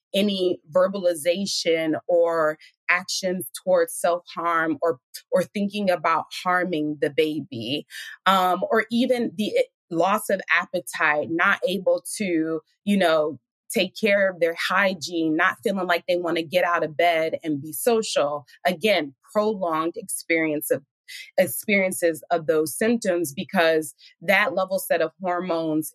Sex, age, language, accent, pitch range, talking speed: female, 20-39, English, American, 160-205 Hz, 130 wpm